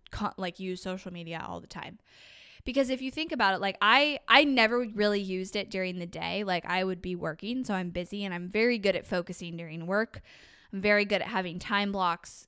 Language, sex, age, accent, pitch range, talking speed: English, female, 10-29, American, 185-225 Hz, 220 wpm